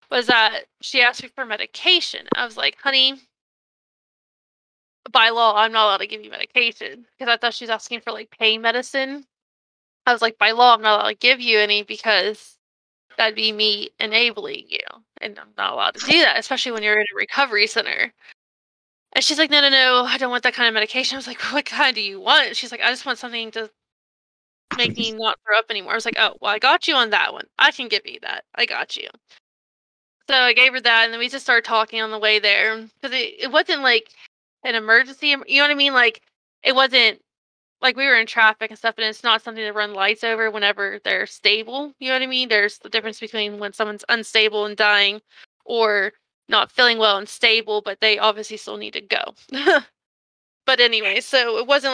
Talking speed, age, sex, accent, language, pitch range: 225 wpm, 20-39, female, American, English, 215-260 Hz